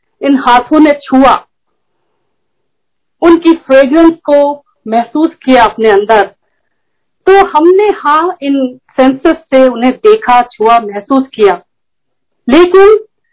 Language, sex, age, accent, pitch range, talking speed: Hindi, female, 50-69, native, 270-385 Hz, 100 wpm